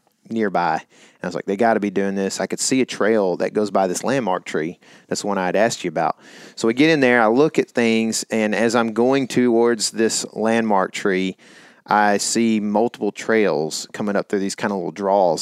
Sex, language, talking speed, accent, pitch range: male, English, 220 wpm, American, 100-115 Hz